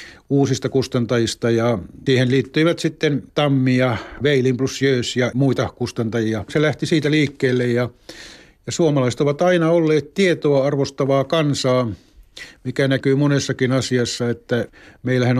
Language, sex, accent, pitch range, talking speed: Finnish, male, native, 130-155 Hz, 130 wpm